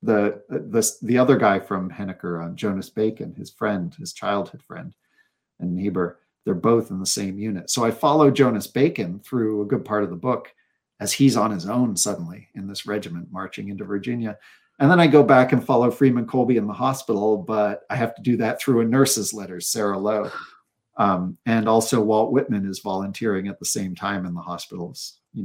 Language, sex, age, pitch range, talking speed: English, male, 40-59, 100-125 Hz, 205 wpm